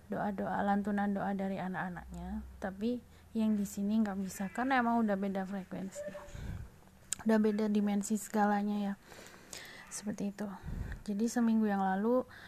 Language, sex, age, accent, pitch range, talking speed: Indonesian, female, 20-39, native, 195-230 Hz, 140 wpm